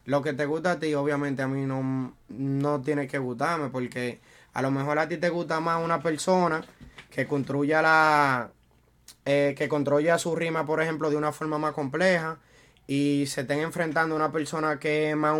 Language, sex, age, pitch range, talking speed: Spanish, male, 20-39, 140-170 Hz, 190 wpm